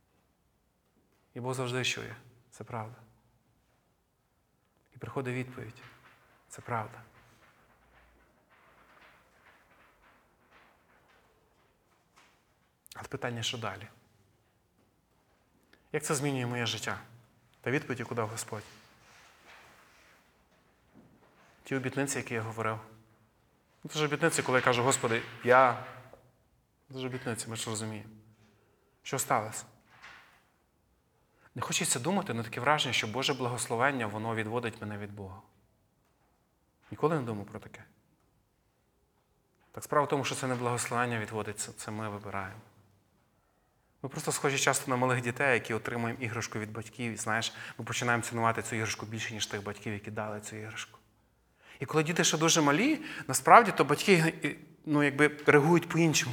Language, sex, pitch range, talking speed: Ukrainian, male, 110-135 Hz, 125 wpm